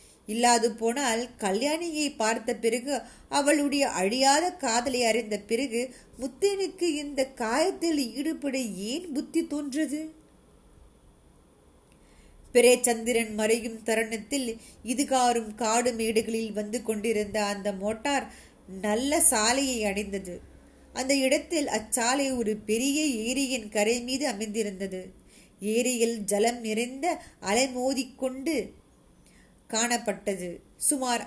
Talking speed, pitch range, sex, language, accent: 85 wpm, 220-270 Hz, female, Tamil, native